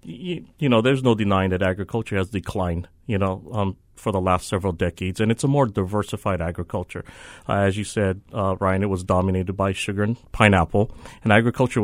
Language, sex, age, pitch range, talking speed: English, male, 40-59, 95-115 Hz, 195 wpm